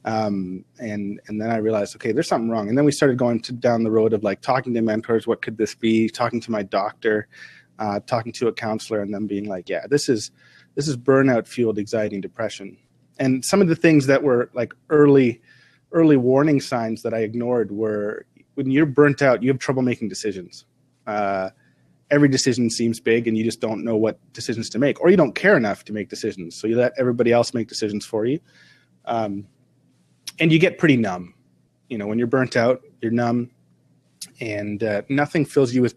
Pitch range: 110-135 Hz